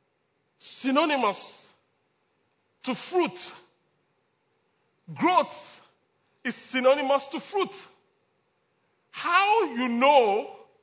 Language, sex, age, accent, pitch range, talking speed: English, male, 40-59, Nigerian, 245-390 Hz, 60 wpm